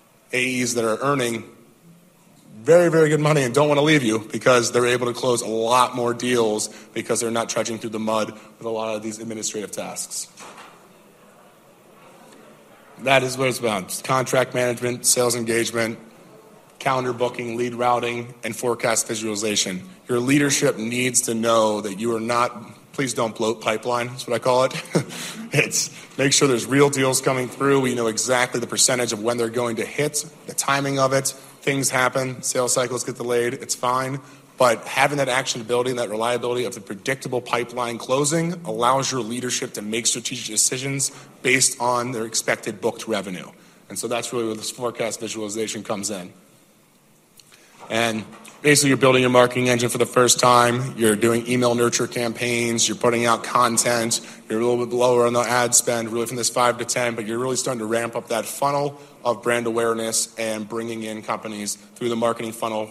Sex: male